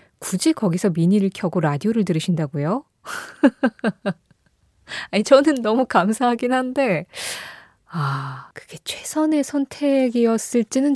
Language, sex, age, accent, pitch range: Korean, female, 20-39, native, 165-250 Hz